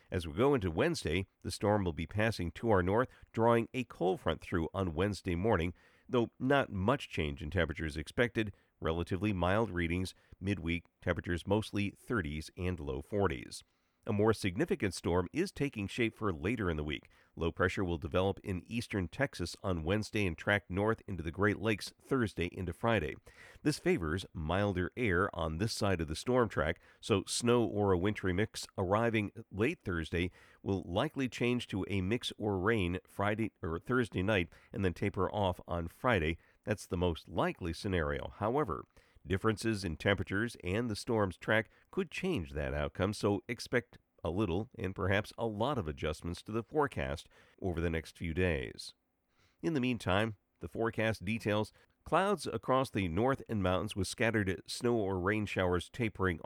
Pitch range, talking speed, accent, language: 90-110 Hz, 170 wpm, American, English